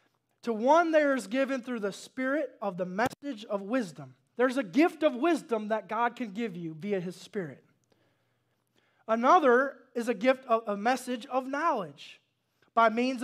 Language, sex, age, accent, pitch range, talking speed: English, male, 20-39, American, 220-285 Hz, 170 wpm